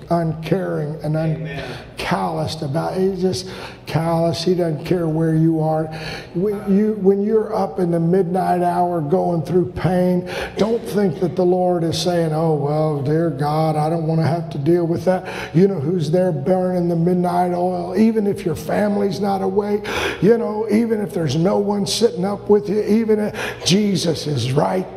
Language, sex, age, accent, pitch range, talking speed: English, male, 50-69, American, 170-260 Hz, 185 wpm